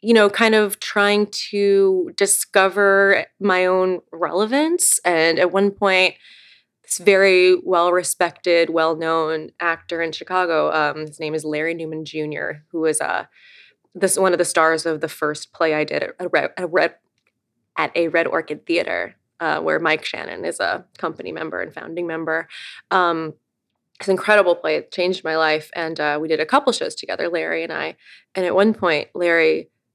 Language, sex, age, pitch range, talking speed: English, female, 20-39, 160-200 Hz, 175 wpm